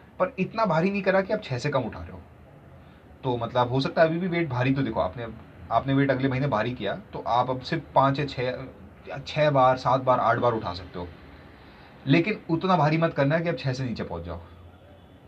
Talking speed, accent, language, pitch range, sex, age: 220 wpm, native, Hindi, 110-140 Hz, male, 30-49